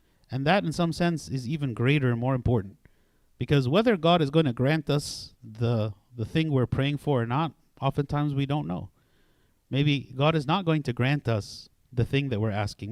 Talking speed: 205 wpm